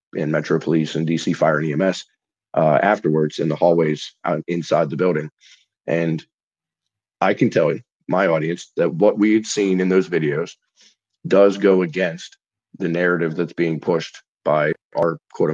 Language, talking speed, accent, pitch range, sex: English, 160 wpm, American, 80-95 Hz, male